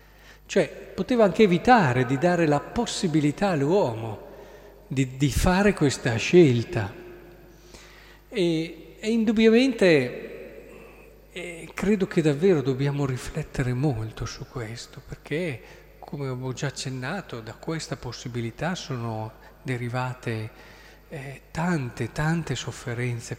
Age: 50-69